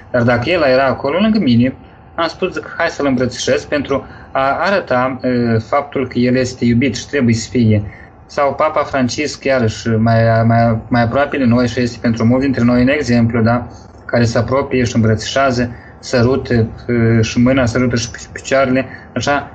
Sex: male